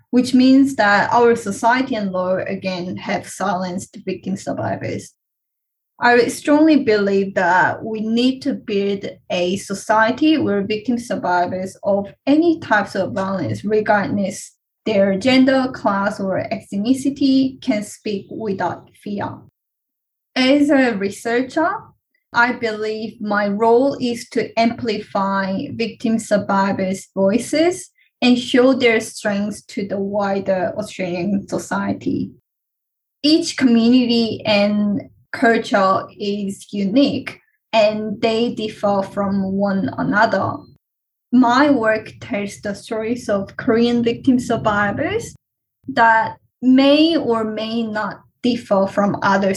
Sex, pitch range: female, 200-250 Hz